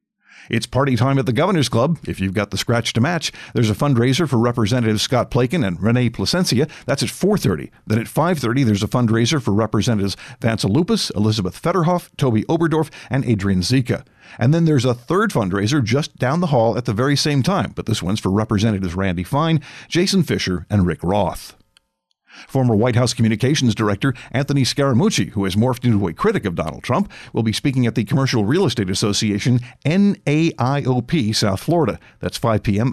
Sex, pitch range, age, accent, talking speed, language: male, 105-150 Hz, 50-69, American, 185 wpm, English